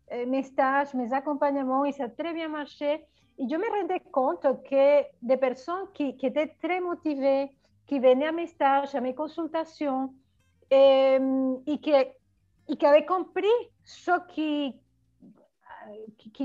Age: 40-59